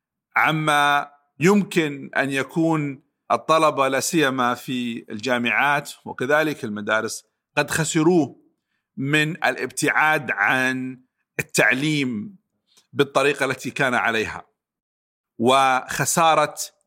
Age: 50-69